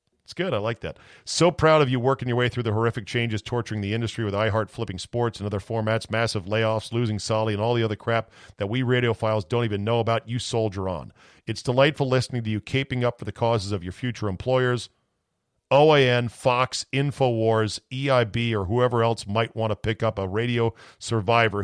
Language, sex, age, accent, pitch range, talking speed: English, male, 40-59, American, 110-130 Hz, 205 wpm